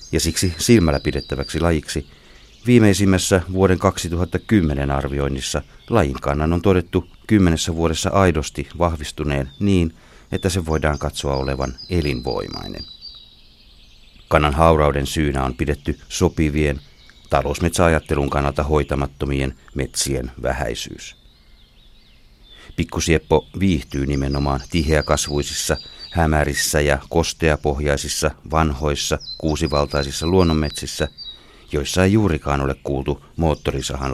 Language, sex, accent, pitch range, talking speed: Finnish, male, native, 70-85 Hz, 90 wpm